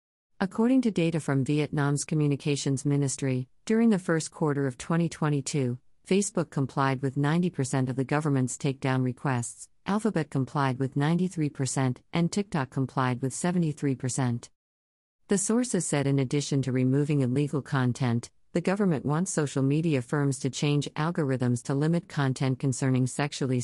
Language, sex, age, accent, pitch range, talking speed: English, female, 50-69, American, 130-155 Hz, 135 wpm